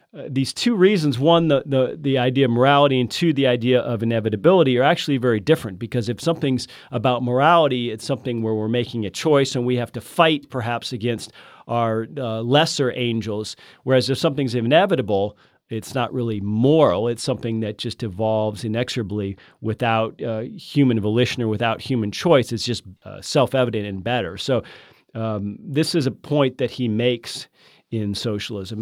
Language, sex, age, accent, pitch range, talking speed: English, male, 40-59, American, 120-160 Hz, 175 wpm